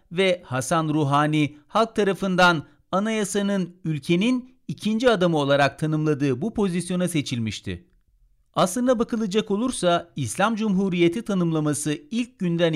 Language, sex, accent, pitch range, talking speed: Turkish, male, native, 135-195 Hz, 105 wpm